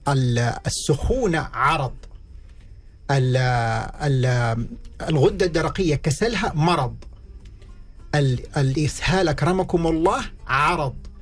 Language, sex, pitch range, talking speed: Arabic, male, 125-155 Hz, 55 wpm